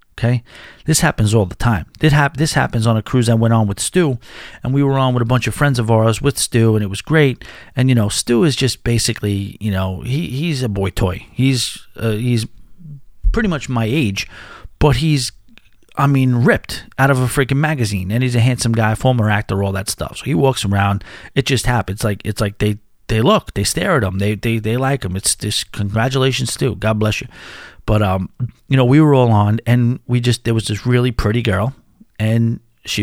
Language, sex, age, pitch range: English, male, 40-59, 105-135 Hz